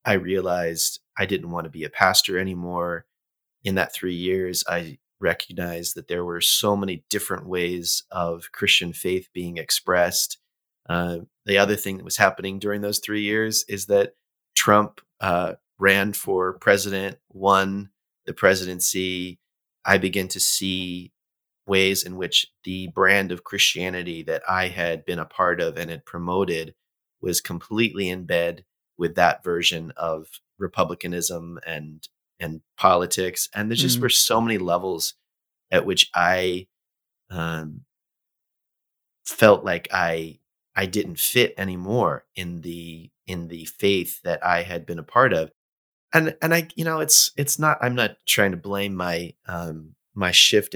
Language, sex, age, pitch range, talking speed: English, male, 30-49, 85-100 Hz, 150 wpm